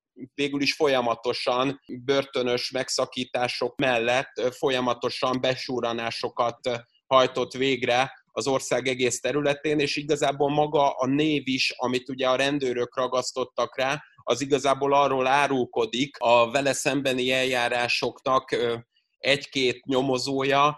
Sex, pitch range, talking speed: male, 120-140 Hz, 105 wpm